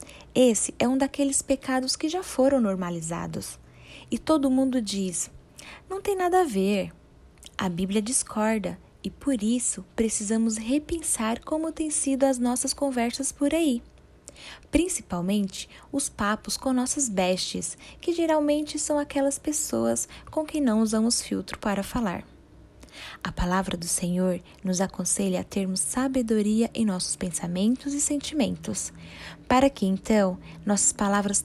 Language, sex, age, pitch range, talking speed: Portuguese, female, 10-29, 190-270 Hz, 135 wpm